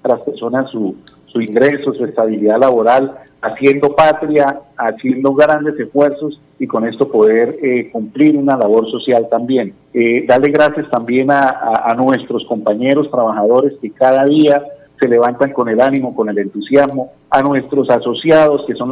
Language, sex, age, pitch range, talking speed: Spanish, male, 50-69, 120-150 Hz, 160 wpm